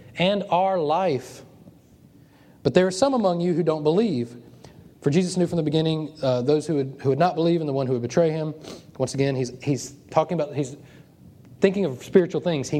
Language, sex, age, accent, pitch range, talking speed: English, male, 30-49, American, 130-175 Hz, 205 wpm